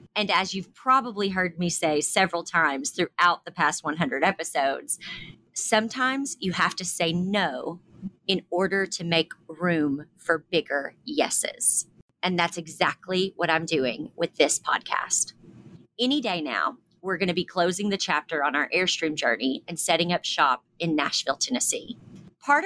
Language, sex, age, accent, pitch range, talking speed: English, female, 30-49, American, 165-200 Hz, 155 wpm